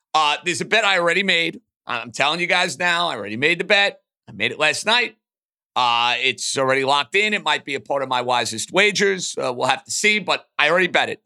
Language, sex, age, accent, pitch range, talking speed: English, male, 50-69, American, 145-200 Hz, 245 wpm